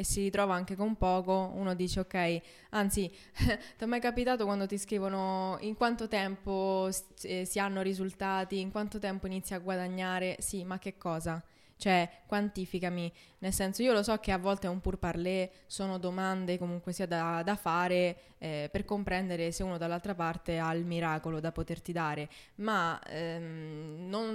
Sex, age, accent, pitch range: female, 20-39, native, 170-200 Hz